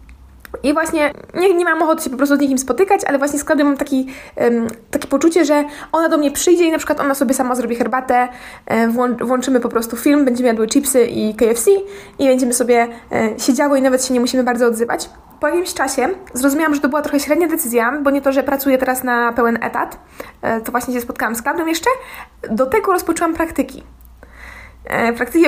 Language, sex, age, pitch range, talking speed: Polish, female, 20-39, 245-300 Hz, 210 wpm